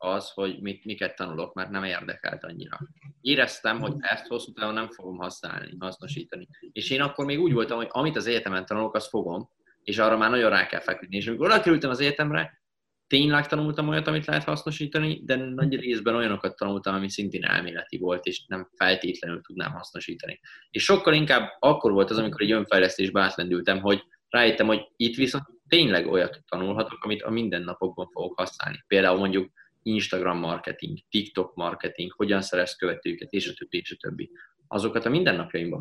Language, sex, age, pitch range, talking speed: Hungarian, male, 20-39, 95-145 Hz, 170 wpm